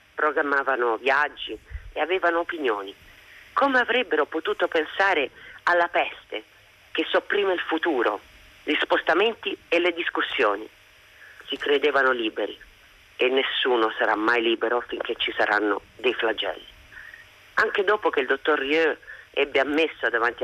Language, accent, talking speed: Italian, native, 125 wpm